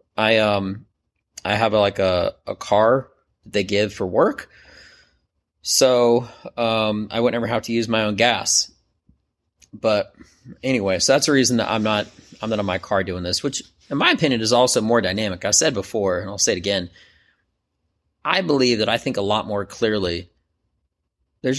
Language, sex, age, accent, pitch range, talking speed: English, male, 30-49, American, 90-115 Hz, 185 wpm